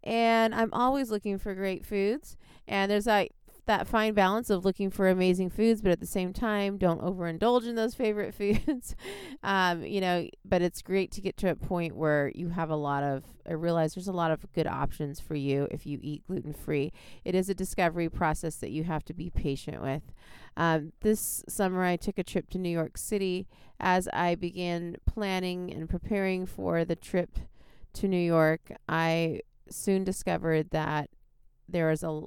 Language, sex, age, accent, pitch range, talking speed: English, female, 30-49, American, 155-195 Hz, 190 wpm